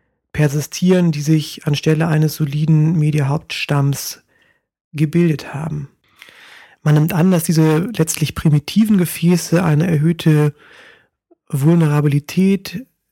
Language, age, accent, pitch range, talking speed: German, 30-49, German, 145-165 Hz, 90 wpm